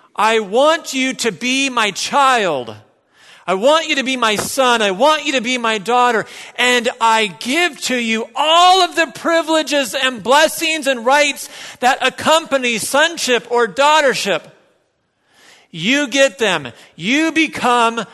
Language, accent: English, American